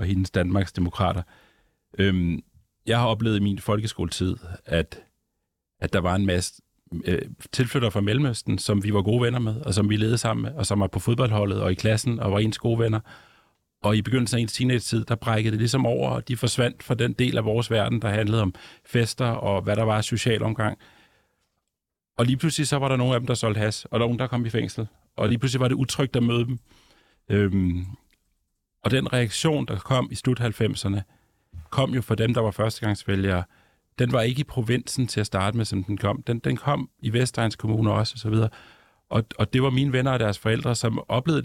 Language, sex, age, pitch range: Danish, male, 40-59, 100-120 Hz